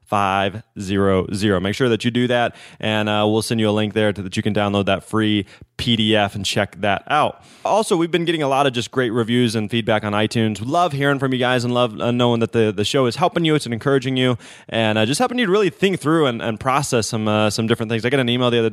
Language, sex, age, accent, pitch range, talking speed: English, male, 20-39, American, 110-135 Hz, 260 wpm